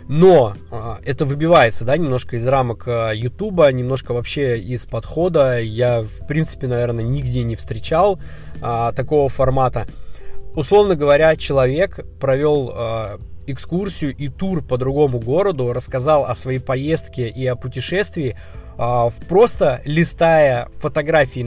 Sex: male